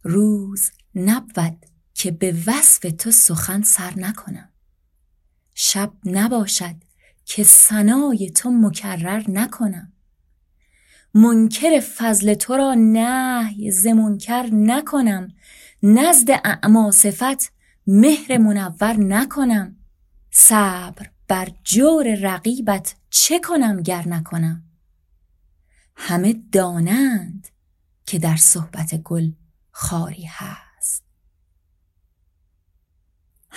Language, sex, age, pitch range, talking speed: Persian, female, 20-39, 165-220 Hz, 80 wpm